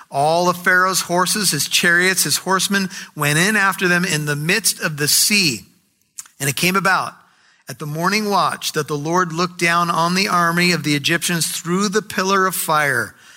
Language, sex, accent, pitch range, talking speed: English, male, American, 160-190 Hz, 190 wpm